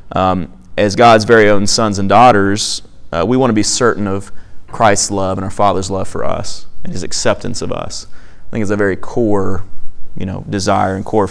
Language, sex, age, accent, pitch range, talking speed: English, male, 30-49, American, 95-110 Hz, 205 wpm